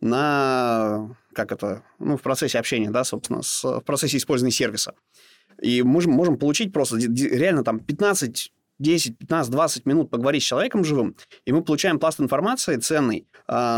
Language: Russian